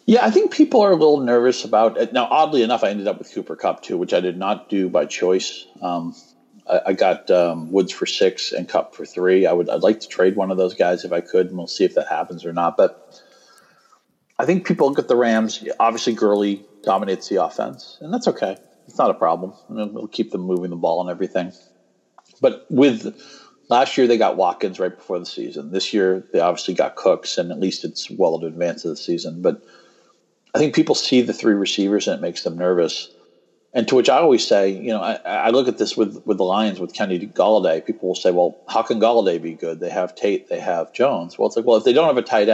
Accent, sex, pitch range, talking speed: American, male, 90-125 Hz, 245 wpm